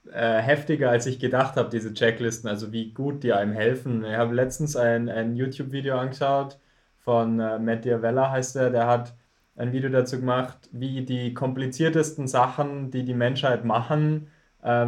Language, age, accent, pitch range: German, 20-39, German, 115-135 Hz